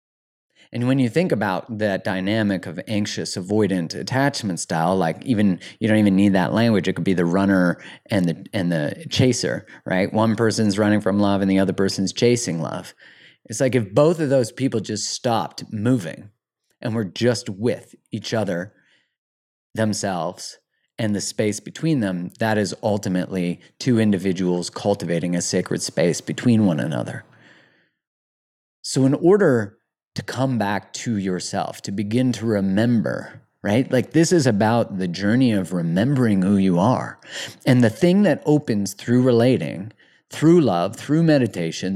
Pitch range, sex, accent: 95-130 Hz, male, American